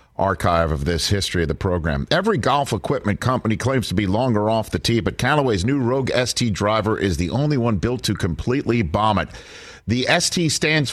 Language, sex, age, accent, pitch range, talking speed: English, male, 50-69, American, 90-125 Hz, 200 wpm